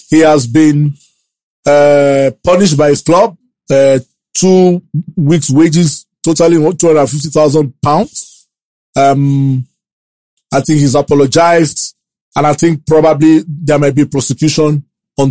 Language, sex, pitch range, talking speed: English, male, 140-170 Hz, 115 wpm